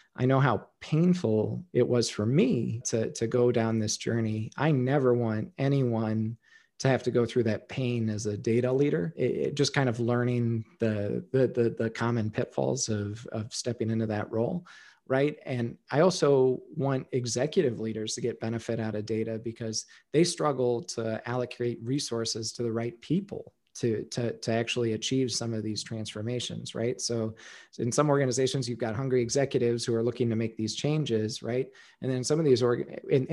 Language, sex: English, male